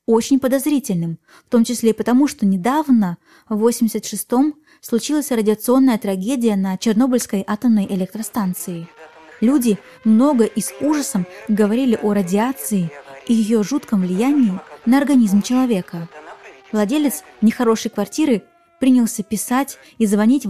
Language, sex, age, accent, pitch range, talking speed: Russian, female, 20-39, native, 200-260 Hz, 120 wpm